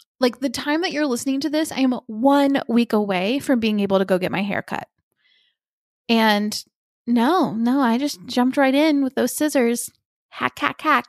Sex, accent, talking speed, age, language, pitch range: female, American, 195 wpm, 20-39, English, 235-280 Hz